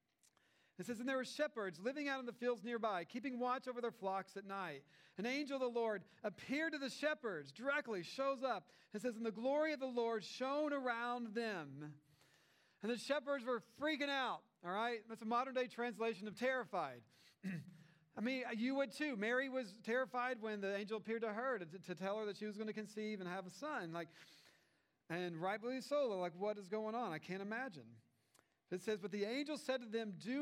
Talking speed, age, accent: 210 wpm, 40-59, American